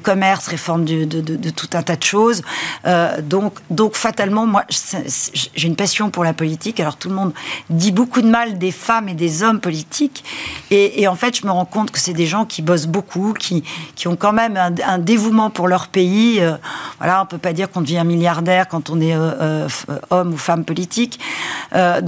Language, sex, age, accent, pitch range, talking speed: French, female, 40-59, French, 170-205 Hz, 220 wpm